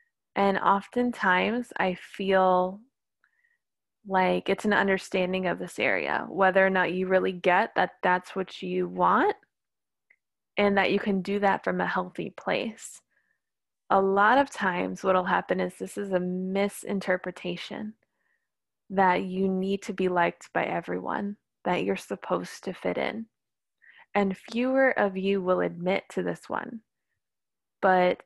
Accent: American